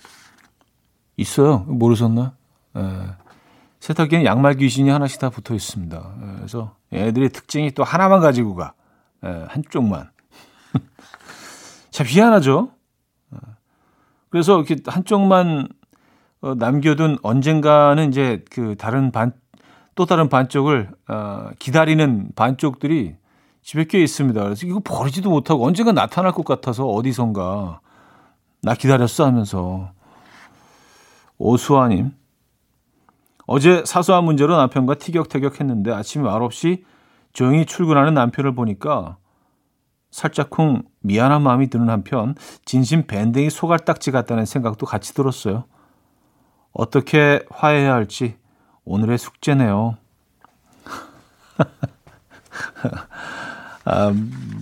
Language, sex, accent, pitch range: Korean, male, native, 110-150 Hz